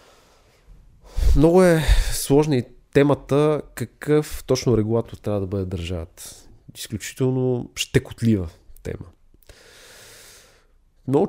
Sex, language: male, Bulgarian